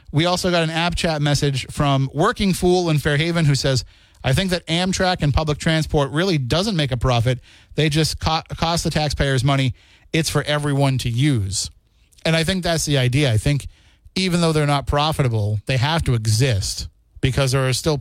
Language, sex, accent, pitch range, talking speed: English, male, American, 115-160 Hz, 195 wpm